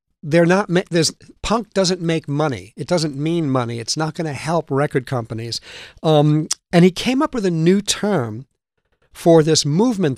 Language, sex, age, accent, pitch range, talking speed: English, male, 50-69, American, 140-185 Hz, 175 wpm